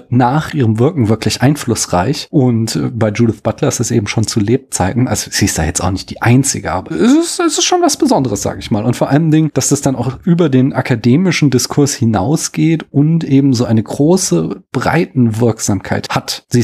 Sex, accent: male, German